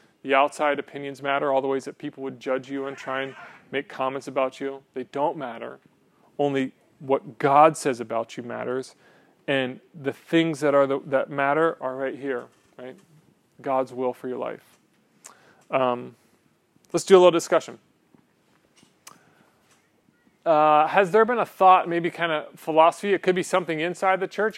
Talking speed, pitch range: 170 wpm, 130-165 Hz